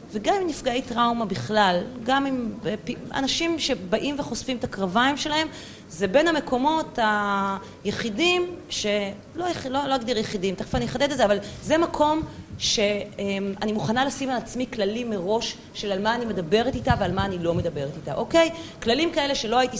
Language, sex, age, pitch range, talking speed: Hebrew, female, 30-49, 195-265 Hz, 165 wpm